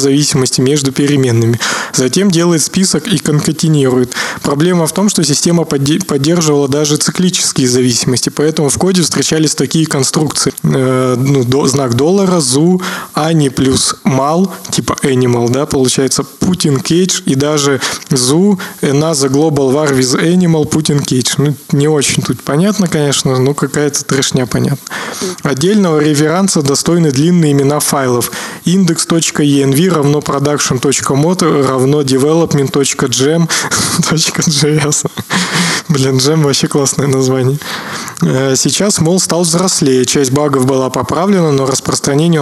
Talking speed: 115 wpm